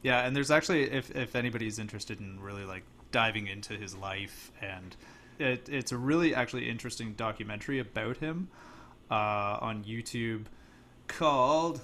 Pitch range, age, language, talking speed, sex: 100-125 Hz, 20-39, English, 145 wpm, male